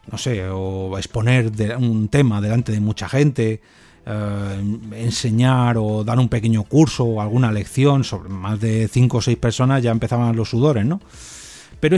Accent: Spanish